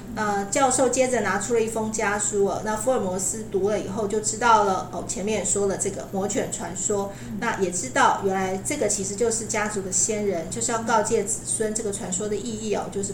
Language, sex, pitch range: Chinese, female, 200-245 Hz